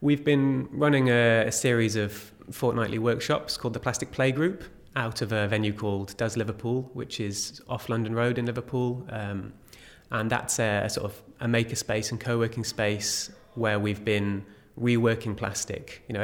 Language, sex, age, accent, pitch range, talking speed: English, male, 20-39, British, 100-120 Hz, 175 wpm